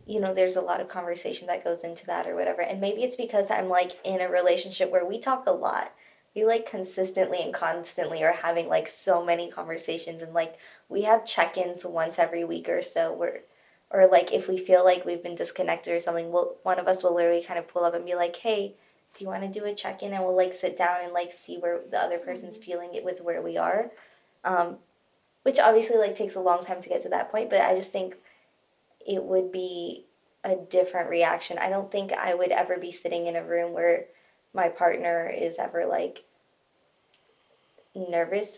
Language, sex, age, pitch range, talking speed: English, female, 20-39, 175-200 Hz, 220 wpm